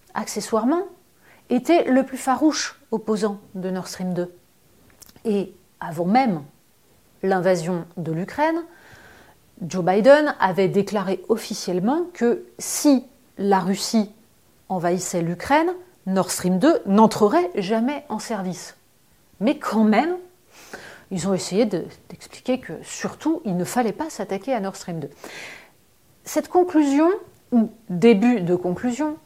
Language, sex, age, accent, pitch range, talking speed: French, female, 30-49, French, 185-255 Hz, 120 wpm